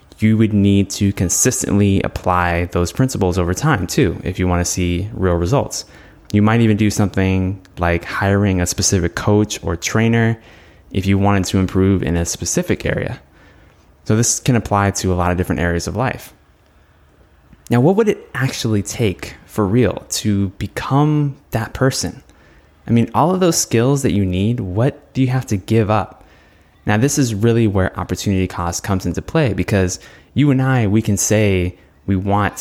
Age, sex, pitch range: 20-39, male, 90-110 Hz